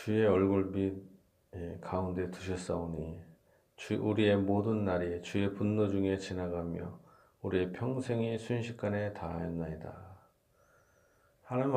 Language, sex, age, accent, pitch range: Korean, male, 40-59, native, 90-110 Hz